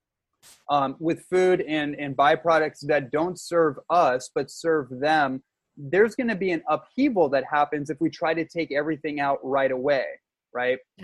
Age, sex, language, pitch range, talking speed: 20-39, male, English, 135-165 Hz, 170 wpm